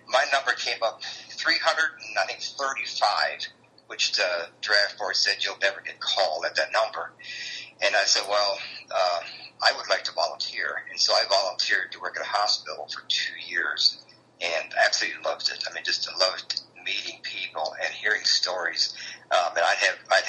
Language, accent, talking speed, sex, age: English, American, 170 wpm, male, 50-69